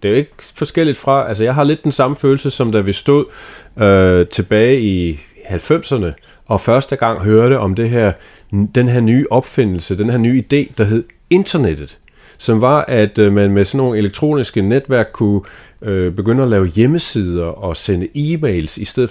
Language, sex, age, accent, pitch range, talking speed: Danish, male, 40-59, native, 100-130 Hz, 180 wpm